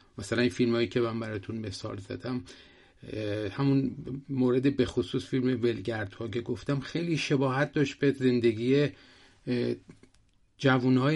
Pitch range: 110-135 Hz